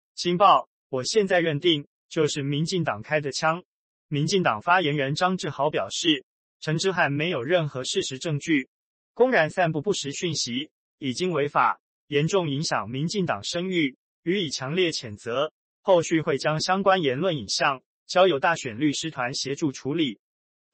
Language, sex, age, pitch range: Chinese, male, 20-39, 140-180 Hz